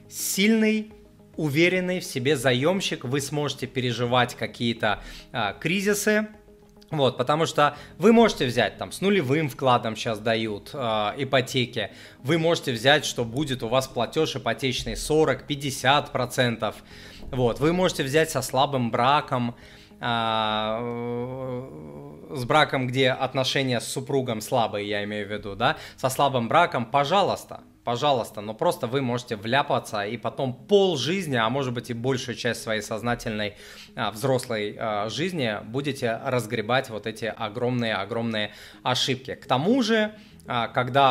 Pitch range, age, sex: 115-145 Hz, 20-39, male